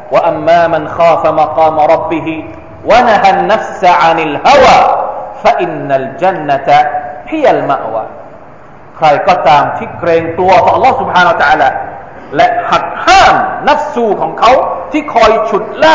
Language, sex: Thai, male